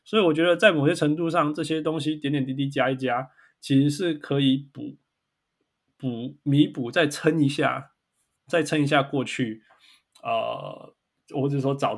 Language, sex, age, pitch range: Chinese, male, 20-39, 125-155 Hz